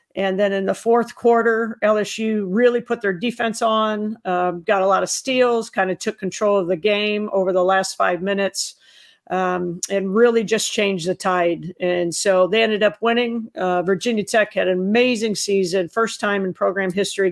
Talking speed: 190 wpm